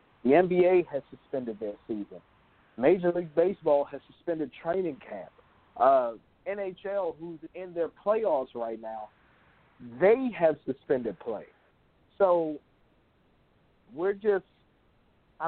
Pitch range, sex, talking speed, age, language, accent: 125-170 Hz, male, 110 wpm, 50-69, English, American